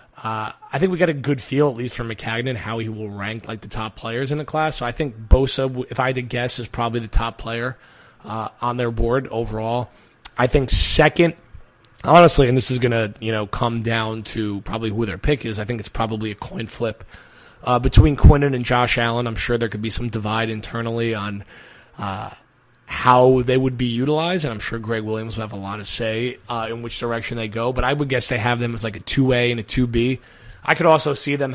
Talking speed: 235 wpm